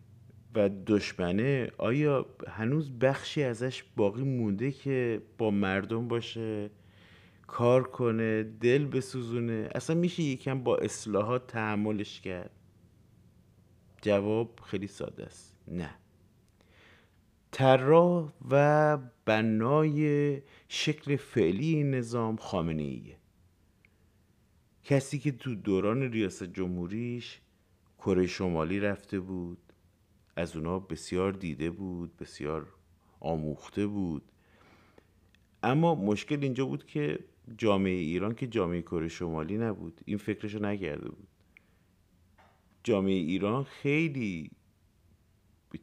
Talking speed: 95 wpm